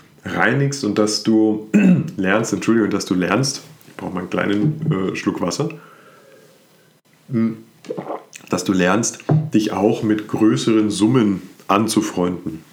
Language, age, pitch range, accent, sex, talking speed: German, 30-49, 100-140 Hz, German, male, 125 wpm